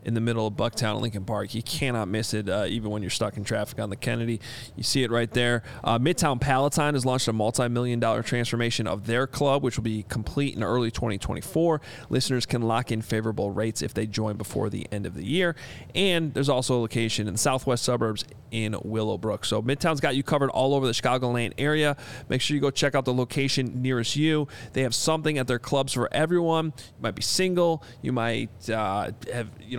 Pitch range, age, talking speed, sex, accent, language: 115-145 Hz, 30-49, 220 wpm, male, American, English